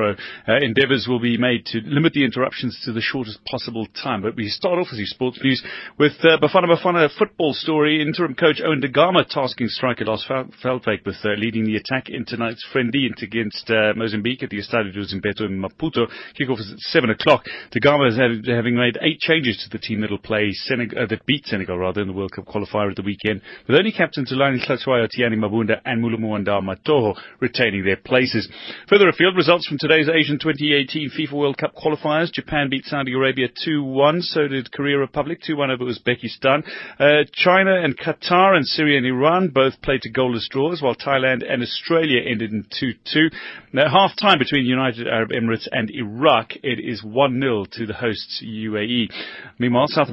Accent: British